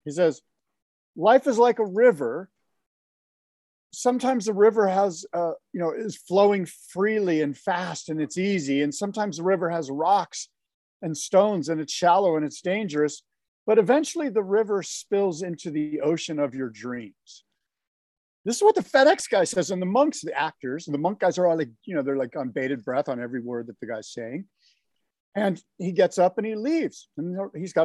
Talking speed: 195 wpm